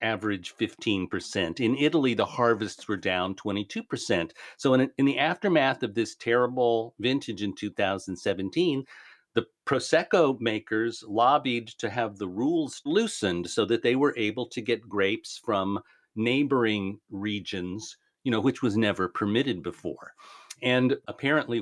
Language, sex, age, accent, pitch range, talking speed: English, male, 50-69, American, 100-125 Hz, 140 wpm